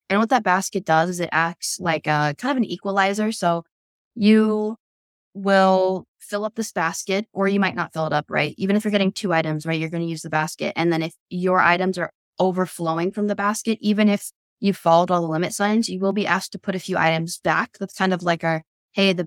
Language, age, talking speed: English, 10-29, 245 wpm